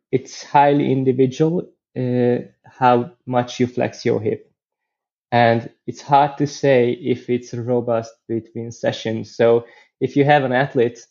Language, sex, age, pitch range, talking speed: English, male, 20-39, 120-130 Hz, 140 wpm